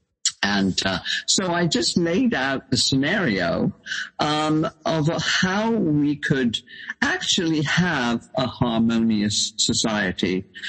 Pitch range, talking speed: 115-180 Hz, 105 wpm